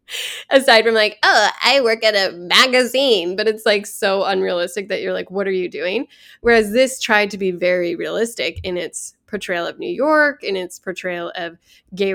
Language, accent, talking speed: English, American, 195 wpm